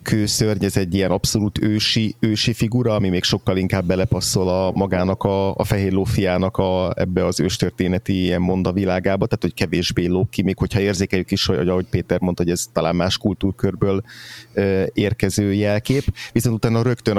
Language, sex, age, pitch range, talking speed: Hungarian, male, 30-49, 90-105 Hz, 170 wpm